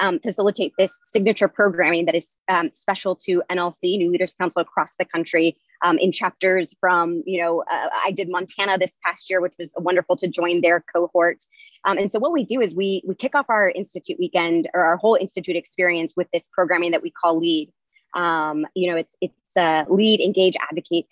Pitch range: 180-210 Hz